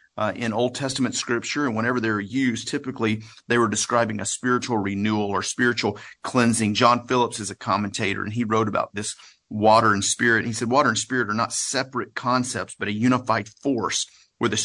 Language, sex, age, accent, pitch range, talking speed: English, male, 40-59, American, 105-120 Hz, 195 wpm